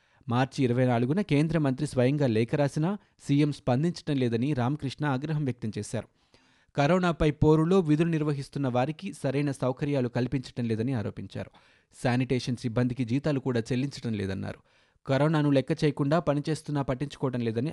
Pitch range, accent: 120-150 Hz, native